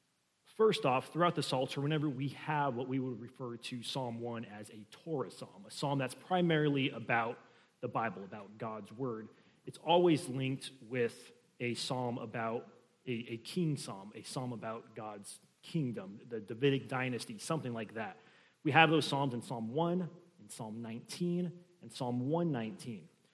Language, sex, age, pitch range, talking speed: English, male, 30-49, 120-150 Hz, 165 wpm